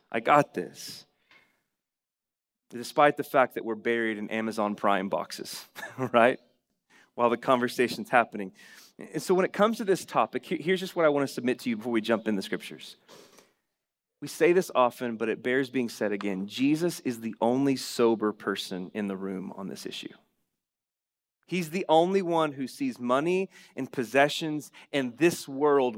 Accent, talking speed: American, 175 wpm